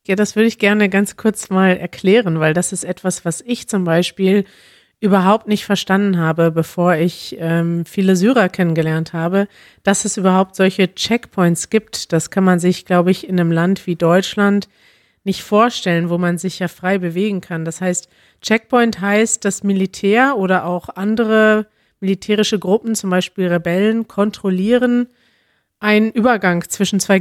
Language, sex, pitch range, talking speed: German, female, 180-210 Hz, 160 wpm